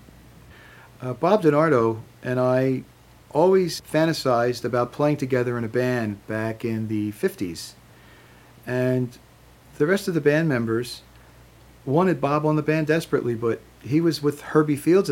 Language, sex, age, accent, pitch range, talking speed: English, male, 40-59, American, 110-135 Hz, 145 wpm